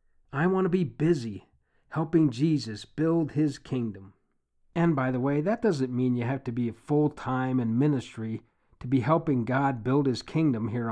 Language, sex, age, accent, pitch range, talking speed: English, male, 50-69, American, 130-170 Hz, 175 wpm